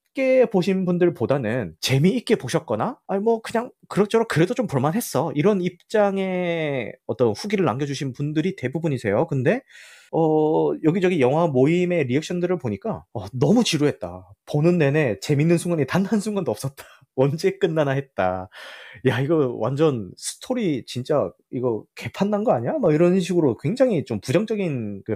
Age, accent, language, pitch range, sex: 30-49, native, Korean, 115-180 Hz, male